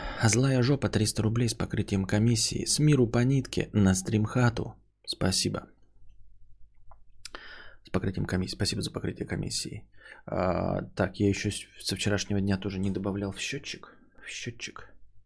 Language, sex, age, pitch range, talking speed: Bulgarian, male, 20-39, 95-110 Hz, 140 wpm